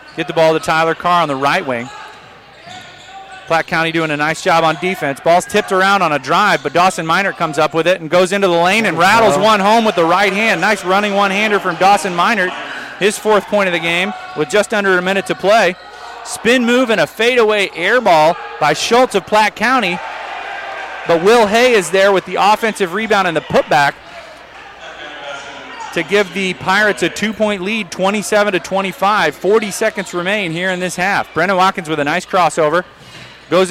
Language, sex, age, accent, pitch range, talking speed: English, male, 30-49, American, 180-235 Hz, 200 wpm